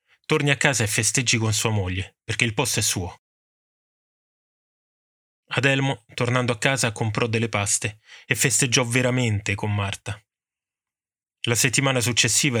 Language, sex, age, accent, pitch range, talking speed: Italian, male, 20-39, native, 105-125 Hz, 135 wpm